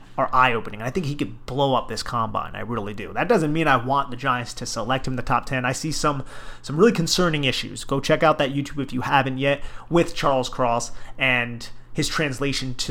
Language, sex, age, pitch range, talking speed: English, male, 30-49, 125-155 Hz, 230 wpm